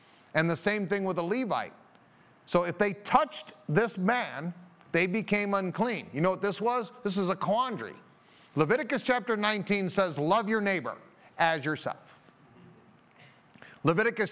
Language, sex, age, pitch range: English, male, 40-59, 185-245 Hz